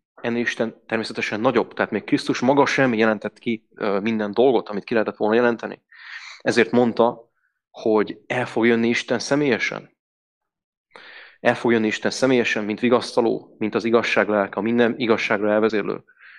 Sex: male